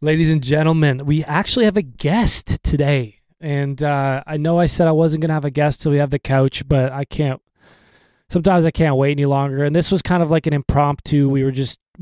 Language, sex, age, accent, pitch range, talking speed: English, male, 20-39, American, 135-160 Hz, 230 wpm